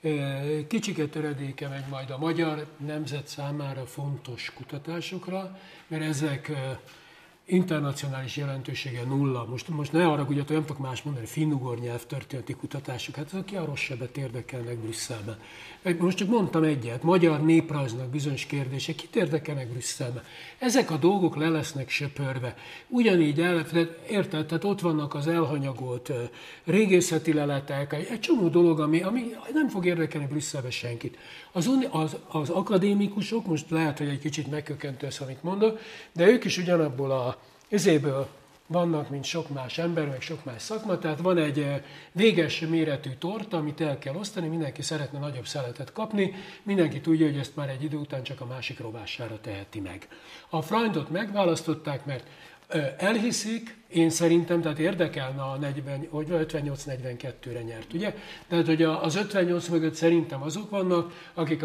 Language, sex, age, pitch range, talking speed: Hungarian, male, 60-79, 140-170 Hz, 150 wpm